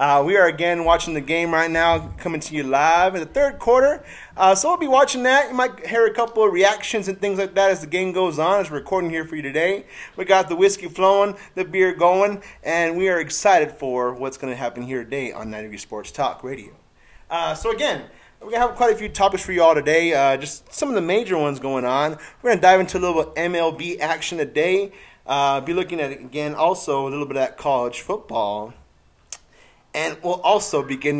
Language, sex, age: English, male, 30-49